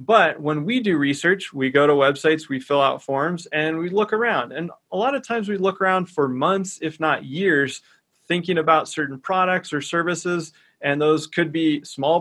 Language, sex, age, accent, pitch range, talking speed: English, male, 30-49, American, 140-180 Hz, 200 wpm